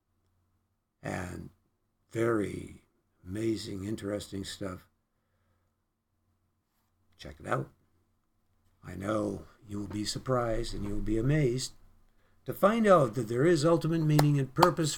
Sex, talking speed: male, 115 wpm